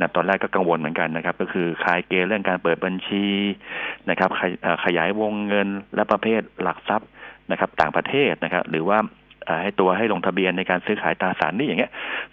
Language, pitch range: Thai, 85-105 Hz